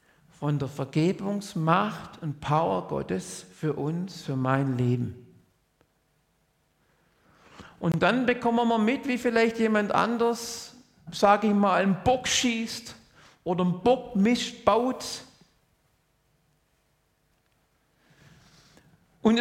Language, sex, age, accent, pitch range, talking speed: German, male, 50-69, German, 140-210 Hz, 100 wpm